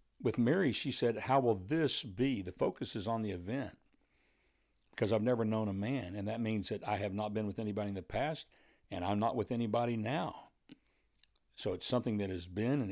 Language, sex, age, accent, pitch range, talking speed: English, male, 60-79, American, 105-130 Hz, 215 wpm